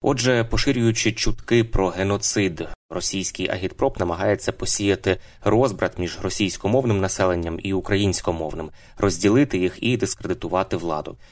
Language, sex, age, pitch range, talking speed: Ukrainian, male, 20-39, 90-110 Hz, 105 wpm